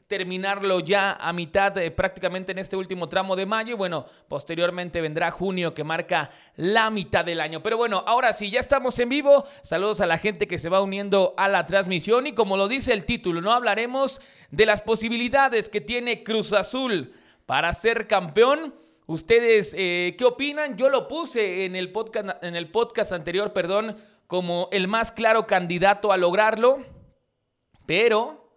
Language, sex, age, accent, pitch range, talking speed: Spanish, male, 30-49, Mexican, 175-225 Hz, 170 wpm